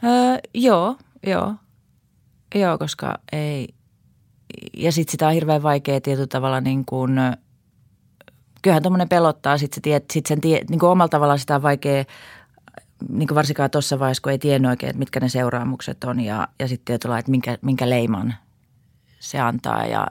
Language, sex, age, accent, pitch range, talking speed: Finnish, female, 30-49, native, 125-145 Hz, 150 wpm